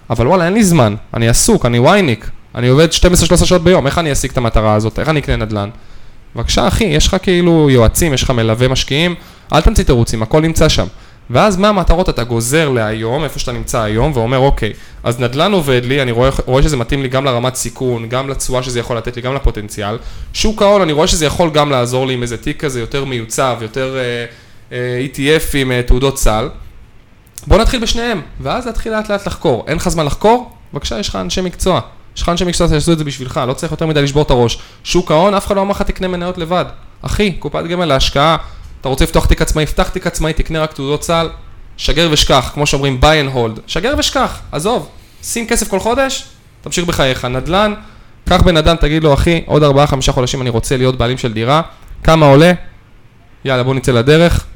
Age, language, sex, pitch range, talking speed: 10-29, Hebrew, male, 120-170 Hz, 170 wpm